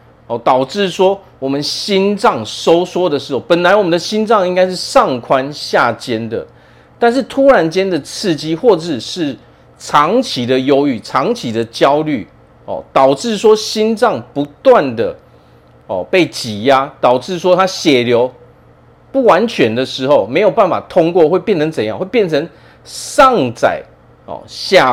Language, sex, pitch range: Chinese, male, 115-195 Hz